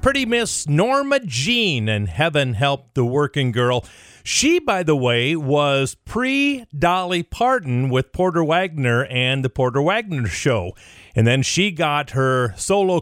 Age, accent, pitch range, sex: 40-59, American, 130-185 Hz, male